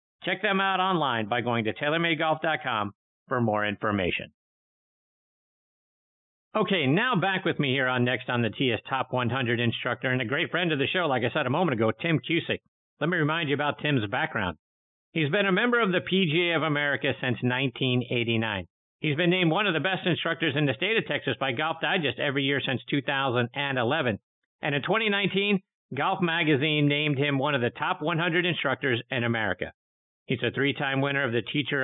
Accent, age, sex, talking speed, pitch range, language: American, 50-69, male, 190 wpm, 125-170 Hz, English